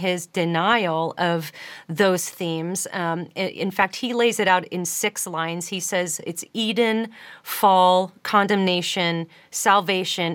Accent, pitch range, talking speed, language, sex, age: American, 175-210 Hz, 130 wpm, English, female, 30-49